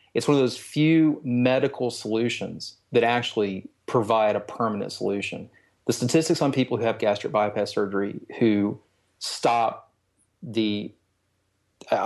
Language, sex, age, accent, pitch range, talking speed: English, male, 30-49, American, 105-120 Hz, 130 wpm